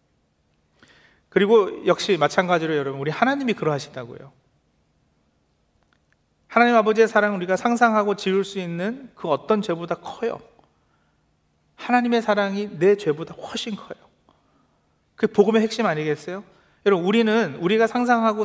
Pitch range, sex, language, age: 160-225 Hz, male, Korean, 40-59